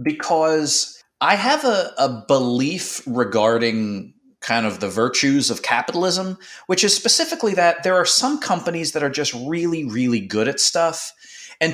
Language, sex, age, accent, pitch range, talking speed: English, male, 30-49, American, 115-170 Hz, 155 wpm